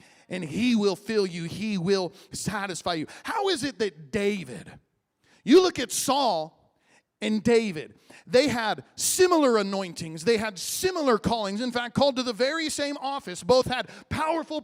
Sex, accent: male, American